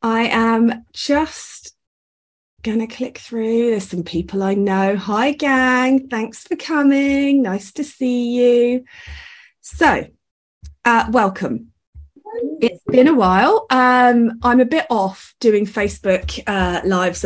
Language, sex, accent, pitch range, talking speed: English, female, British, 185-250 Hz, 130 wpm